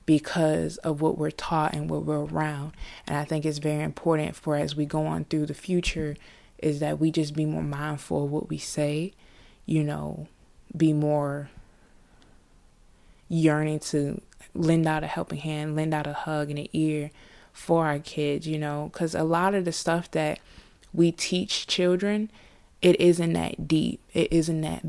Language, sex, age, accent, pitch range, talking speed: English, female, 20-39, American, 150-165 Hz, 180 wpm